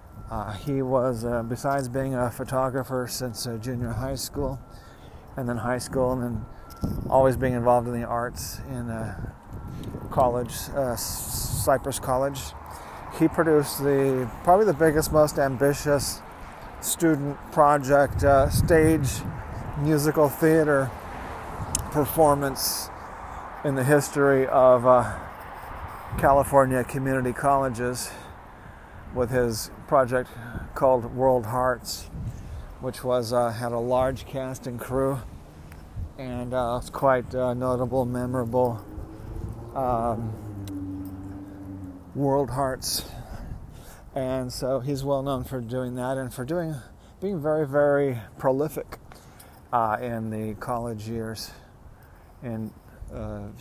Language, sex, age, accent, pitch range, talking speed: English, male, 40-59, American, 110-135 Hz, 115 wpm